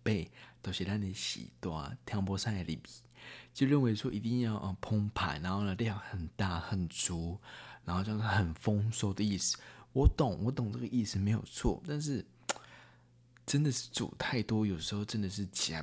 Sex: male